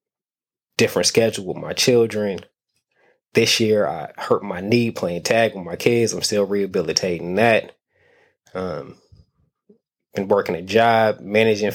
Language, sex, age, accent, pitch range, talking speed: English, male, 20-39, American, 95-115 Hz, 135 wpm